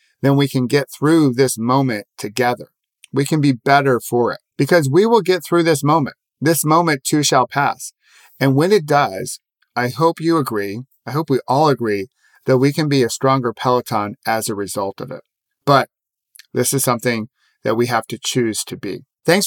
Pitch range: 120-150 Hz